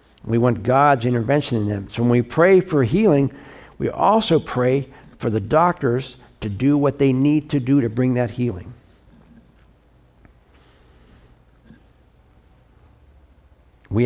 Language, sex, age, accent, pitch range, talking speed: English, male, 60-79, American, 105-135 Hz, 130 wpm